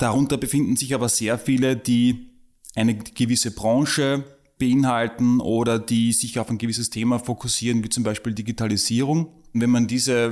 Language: German